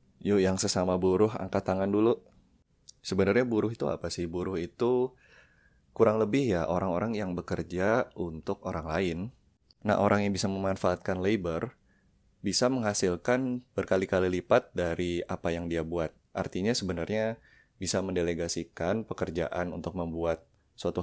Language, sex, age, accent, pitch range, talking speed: Indonesian, male, 20-39, native, 85-100 Hz, 130 wpm